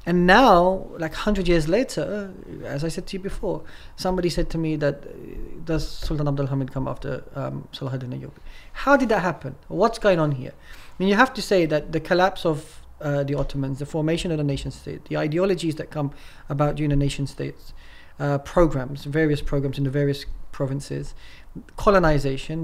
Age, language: 30-49, English